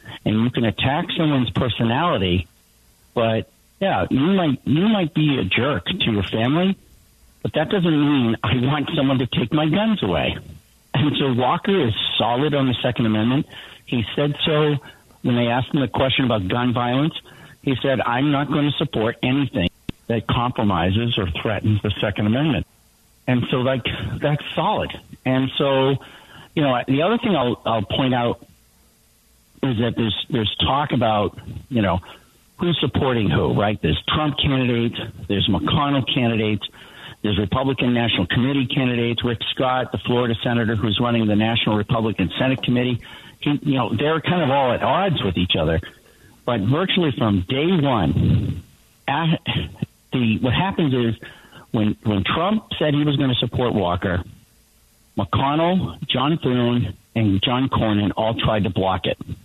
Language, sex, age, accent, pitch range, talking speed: English, male, 60-79, American, 110-145 Hz, 160 wpm